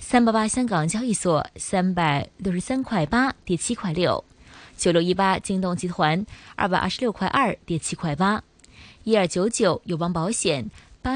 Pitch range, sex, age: 165-225 Hz, female, 20-39